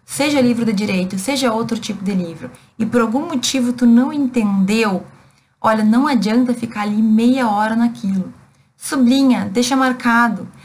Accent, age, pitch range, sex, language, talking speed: Brazilian, 20-39, 205-250 Hz, female, Portuguese, 150 wpm